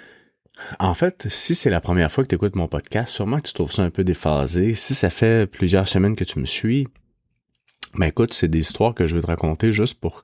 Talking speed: 240 wpm